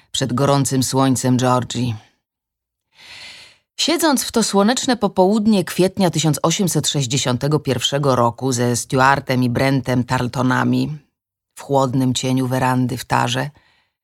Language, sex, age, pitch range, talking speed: Polish, female, 30-49, 130-165 Hz, 100 wpm